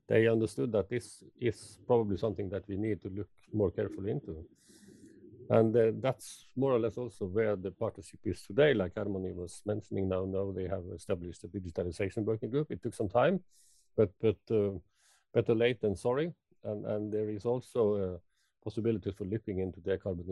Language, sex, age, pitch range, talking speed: Finnish, male, 50-69, 95-110 Hz, 185 wpm